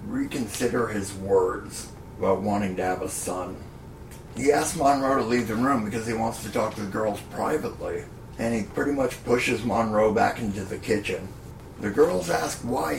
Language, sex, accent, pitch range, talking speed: English, male, American, 100-120 Hz, 180 wpm